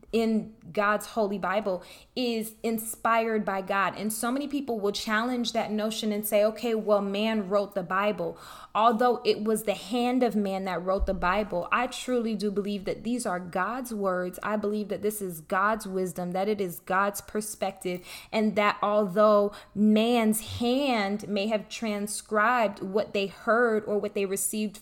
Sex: female